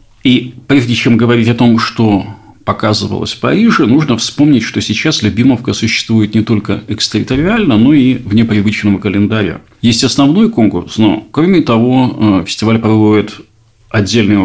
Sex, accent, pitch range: male, native, 100-120 Hz